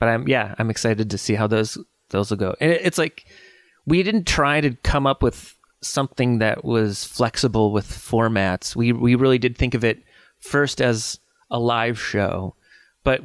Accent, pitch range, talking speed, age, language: American, 105-125 Hz, 185 wpm, 30-49, English